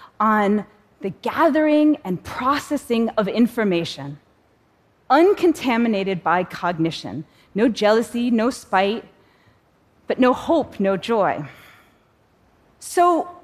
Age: 30-49